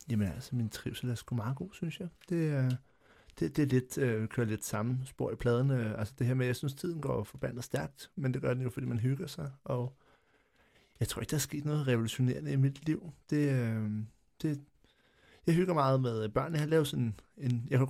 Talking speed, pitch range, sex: 220 wpm, 120-150 Hz, male